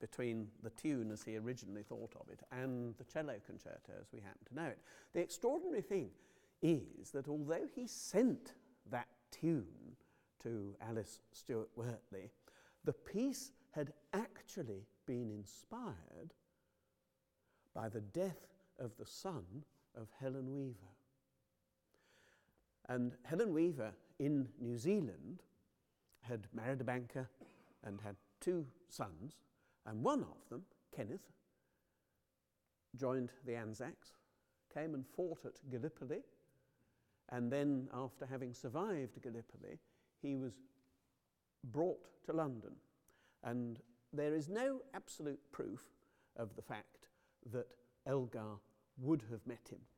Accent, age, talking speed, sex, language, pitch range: British, 60-79, 120 wpm, male, English, 115-150 Hz